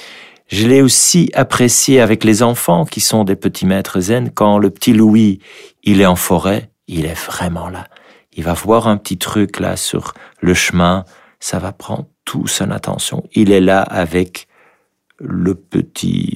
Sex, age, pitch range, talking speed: male, 50-69, 85-100 Hz, 170 wpm